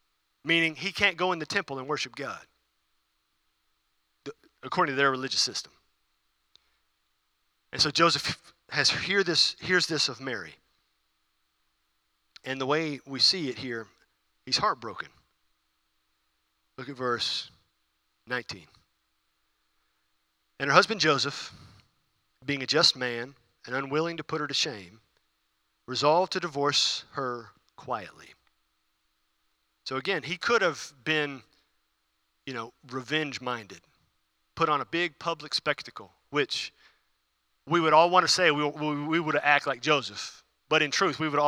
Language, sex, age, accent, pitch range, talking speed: English, male, 40-59, American, 130-165 Hz, 135 wpm